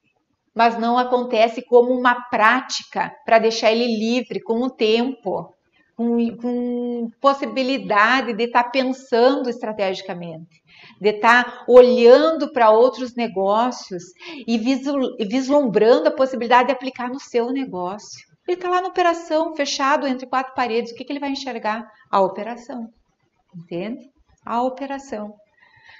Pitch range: 215-260 Hz